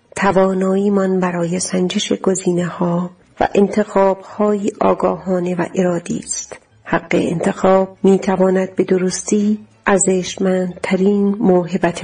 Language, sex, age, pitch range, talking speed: Persian, female, 40-59, 180-200 Hz, 110 wpm